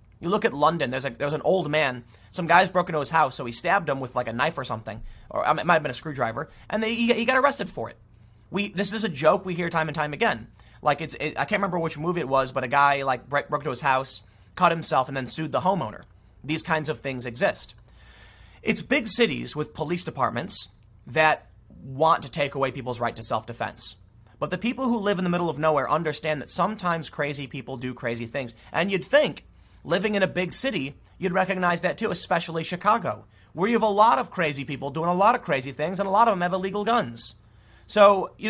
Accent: American